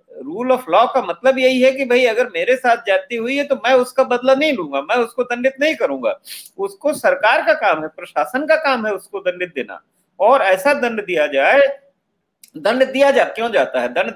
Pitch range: 205-275 Hz